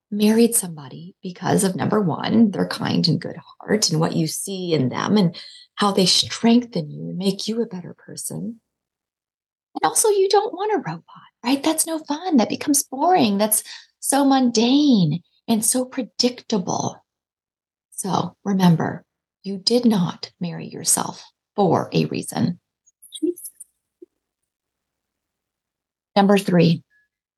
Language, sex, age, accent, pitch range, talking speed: English, female, 30-49, American, 205-305 Hz, 130 wpm